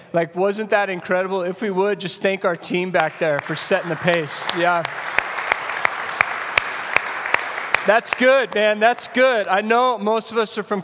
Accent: American